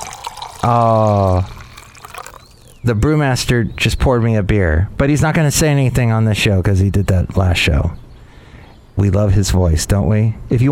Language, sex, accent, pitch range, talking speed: English, male, American, 100-145 Hz, 180 wpm